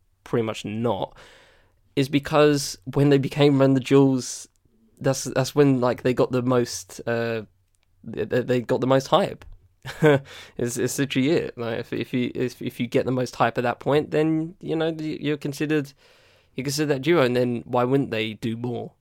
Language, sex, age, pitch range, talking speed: English, male, 10-29, 110-135 Hz, 190 wpm